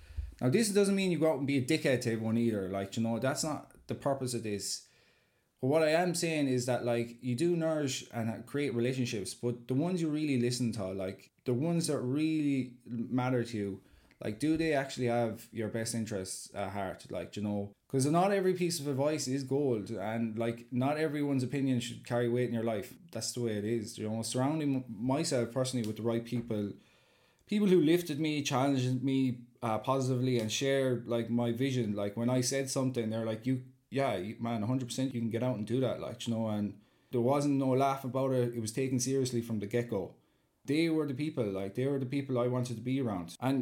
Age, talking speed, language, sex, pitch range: 20-39, 225 wpm, English, male, 115-135 Hz